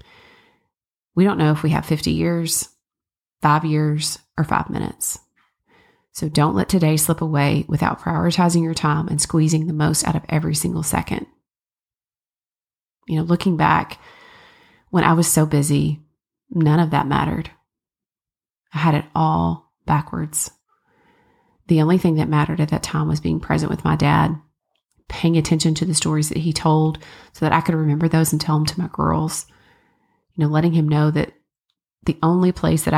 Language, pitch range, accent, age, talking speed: English, 150-170 Hz, American, 30-49, 170 wpm